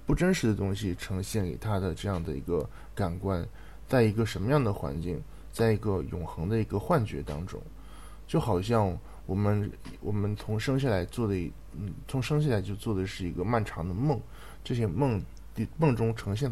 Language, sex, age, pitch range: Japanese, male, 20-39, 85-115 Hz